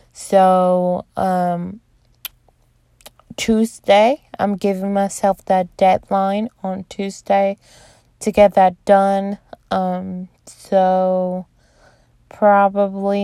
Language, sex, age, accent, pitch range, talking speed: English, female, 20-39, American, 185-210 Hz, 75 wpm